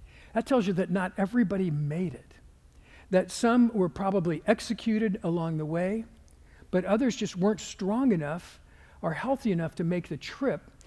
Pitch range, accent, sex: 160-195 Hz, American, male